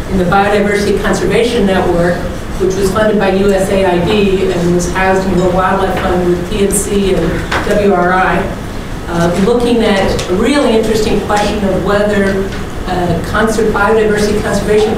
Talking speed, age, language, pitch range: 135 wpm, 50-69, English, 185-210 Hz